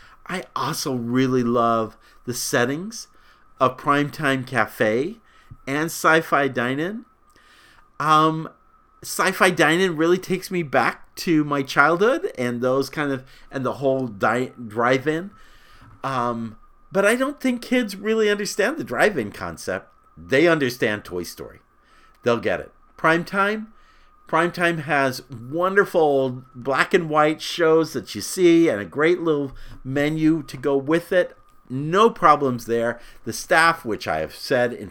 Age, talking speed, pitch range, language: 50-69, 145 wpm, 120-165 Hz, English